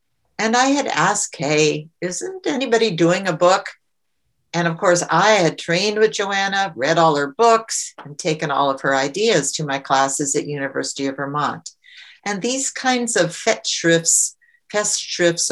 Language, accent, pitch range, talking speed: English, American, 155-200 Hz, 160 wpm